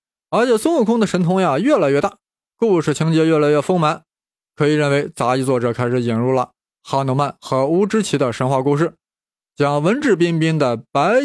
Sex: male